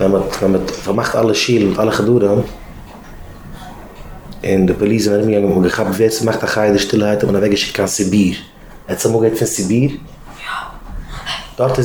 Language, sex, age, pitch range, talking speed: English, male, 30-49, 110-150 Hz, 205 wpm